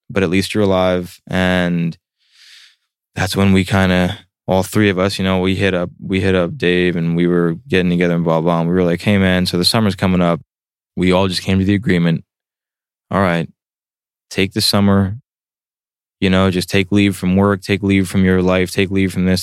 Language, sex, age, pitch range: English, male, 20-39, 85-100 Hz